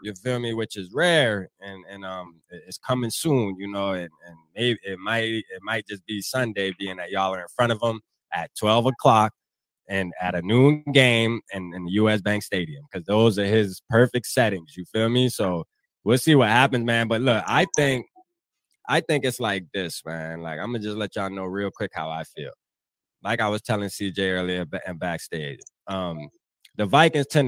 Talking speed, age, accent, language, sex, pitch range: 205 wpm, 20-39, American, English, male, 95-125 Hz